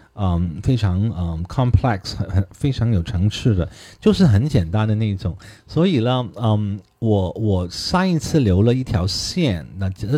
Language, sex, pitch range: Chinese, male, 95-120 Hz